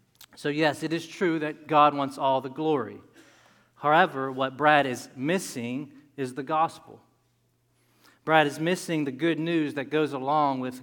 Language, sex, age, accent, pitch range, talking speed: English, male, 40-59, American, 125-150 Hz, 160 wpm